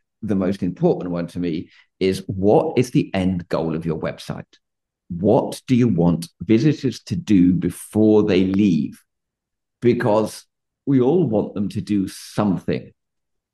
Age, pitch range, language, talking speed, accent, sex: 50-69, 95-125 Hz, English, 145 wpm, British, male